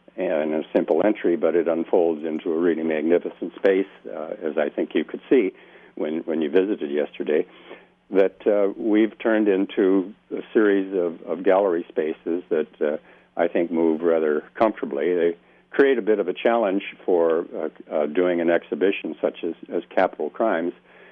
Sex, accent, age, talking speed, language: male, American, 60-79, 170 wpm, English